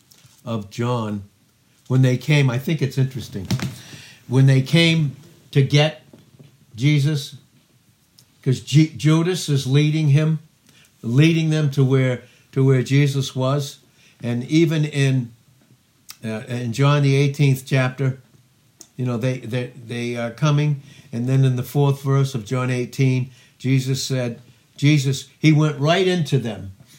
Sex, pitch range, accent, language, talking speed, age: male, 125-145 Hz, American, English, 140 wpm, 60-79